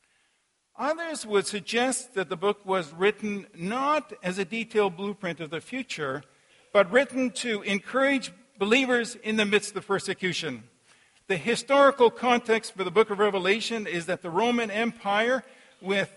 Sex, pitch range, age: male, 190-240 Hz, 50-69